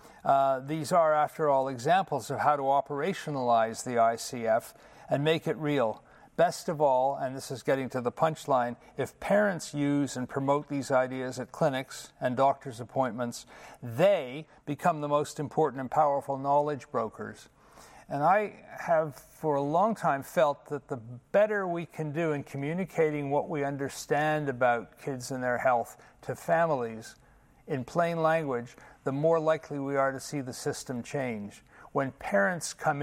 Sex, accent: male, American